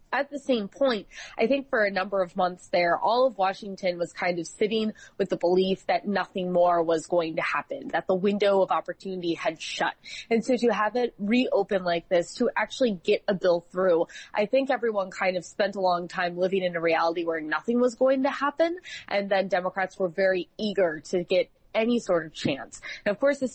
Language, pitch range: English, 175-220 Hz